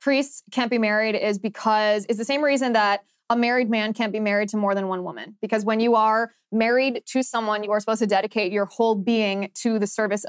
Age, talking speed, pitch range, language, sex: 20-39, 235 wpm, 210-245 Hz, English, female